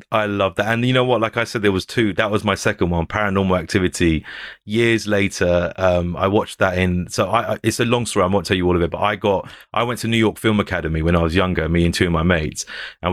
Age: 30-49